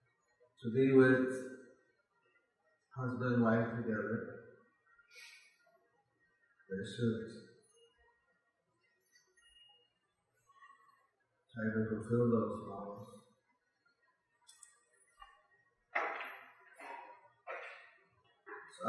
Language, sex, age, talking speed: English, male, 50-69, 50 wpm